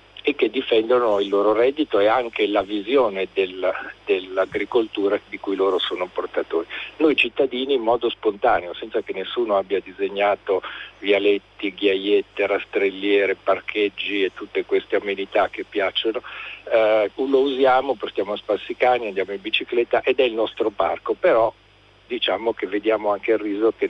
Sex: male